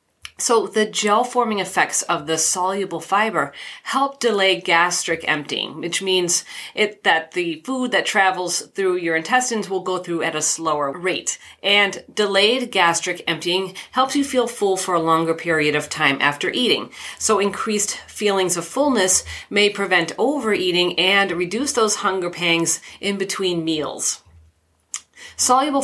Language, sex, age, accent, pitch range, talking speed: English, female, 40-59, American, 170-215 Hz, 145 wpm